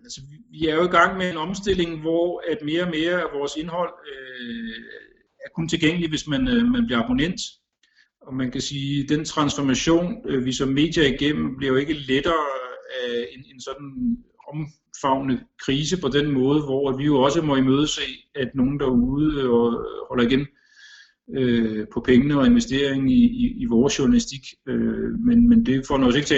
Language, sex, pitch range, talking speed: Danish, male, 130-165 Hz, 190 wpm